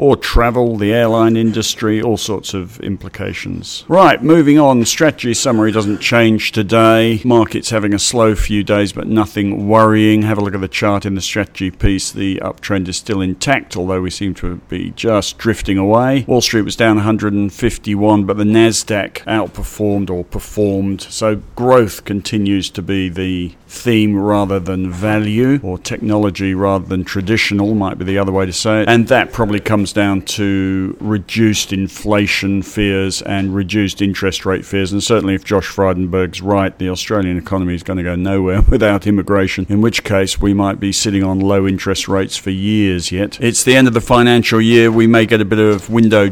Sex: male